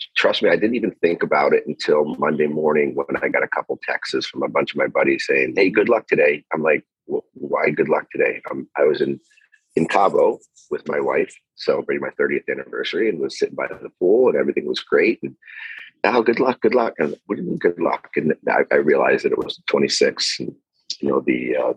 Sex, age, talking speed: male, 40-59, 225 wpm